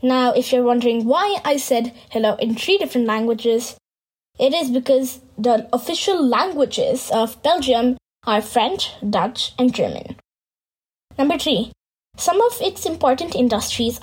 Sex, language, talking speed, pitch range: female, English, 135 wpm, 240-305 Hz